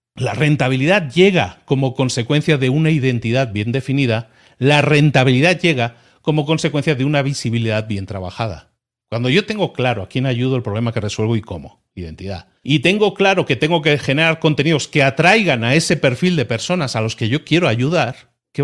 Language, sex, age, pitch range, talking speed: Spanish, male, 40-59, 130-170 Hz, 180 wpm